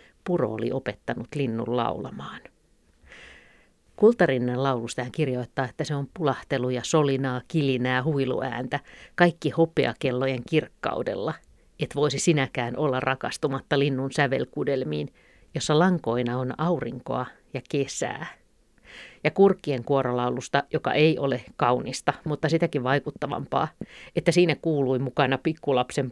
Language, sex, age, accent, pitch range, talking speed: Finnish, female, 50-69, native, 130-155 Hz, 110 wpm